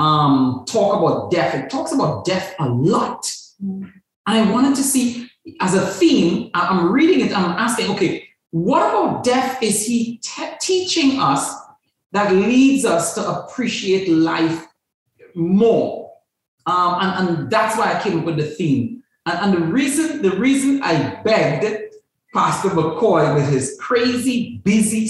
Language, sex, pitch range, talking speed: English, male, 150-220 Hz, 155 wpm